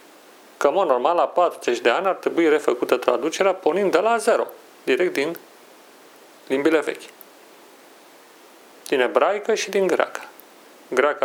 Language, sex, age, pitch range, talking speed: Romanian, male, 40-59, 145-200 Hz, 135 wpm